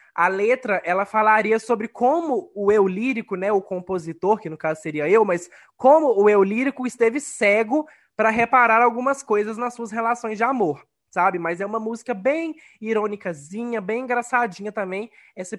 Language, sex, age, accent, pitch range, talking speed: Portuguese, male, 20-39, Brazilian, 185-245 Hz, 170 wpm